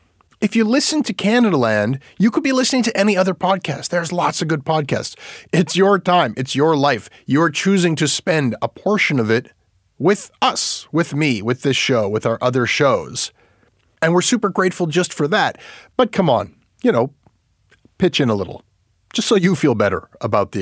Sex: male